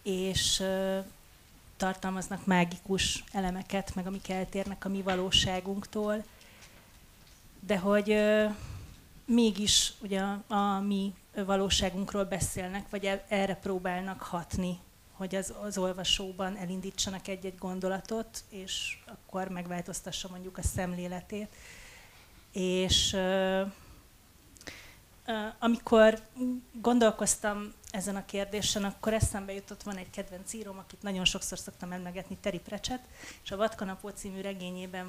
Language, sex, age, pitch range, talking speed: Hungarian, female, 30-49, 185-210 Hz, 100 wpm